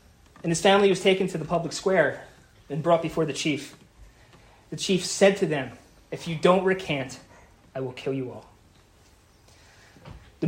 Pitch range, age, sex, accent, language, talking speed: 110-170 Hz, 30-49, male, American, English, 165 wpm